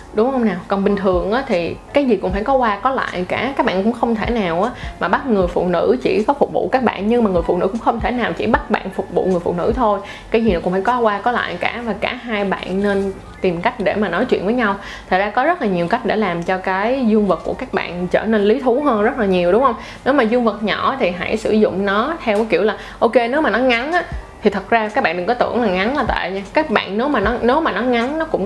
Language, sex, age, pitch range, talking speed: Vietnamese, female, 20-39, 195-250 Hz, 300 wpm